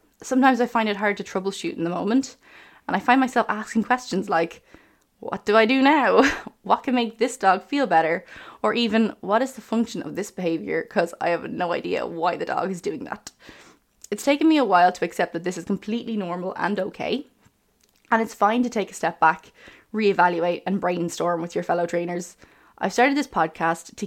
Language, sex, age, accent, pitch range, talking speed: English, female, 20-39, Irish, 175-230 Hz, 205 wpm